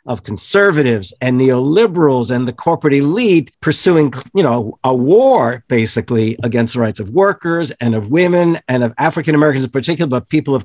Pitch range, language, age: 130-175 Hz, English, 50-69